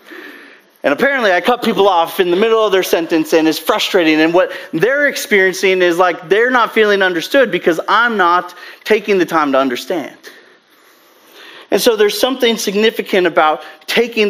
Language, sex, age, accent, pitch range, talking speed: English, male, 30-49, American, 145-215 Hz, 170 wpm